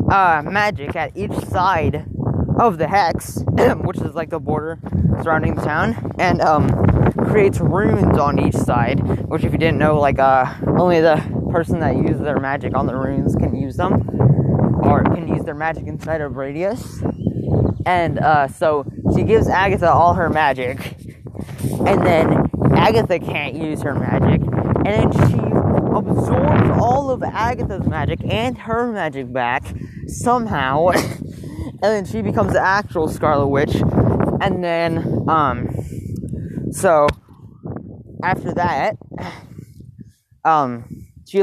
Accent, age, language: American, 10-29, English